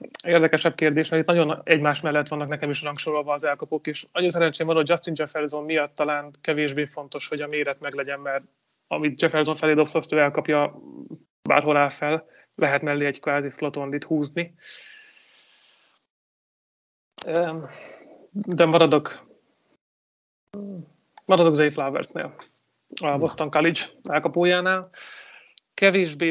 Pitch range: 145-165 Hz